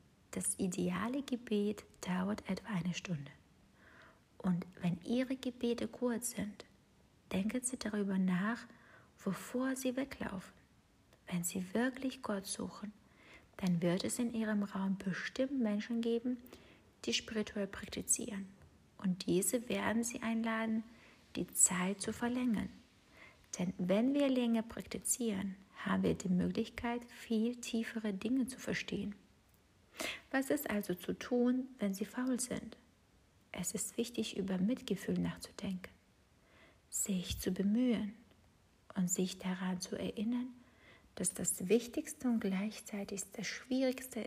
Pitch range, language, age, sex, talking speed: 195-240 Hz, German, 60-79, female, 120 wpm